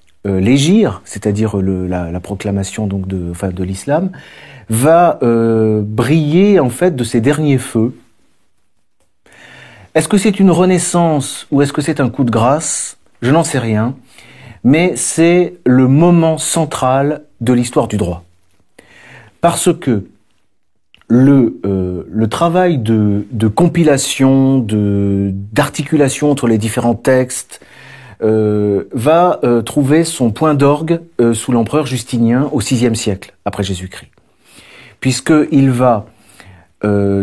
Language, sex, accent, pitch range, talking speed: French, male, French, 105-150 Hz, 125 wpm